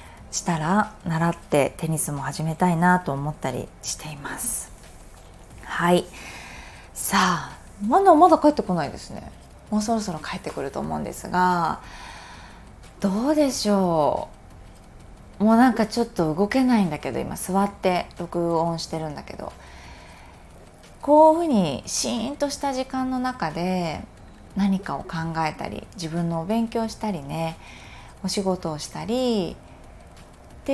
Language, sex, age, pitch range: Japanese, female, 20-39, 165-240 Hz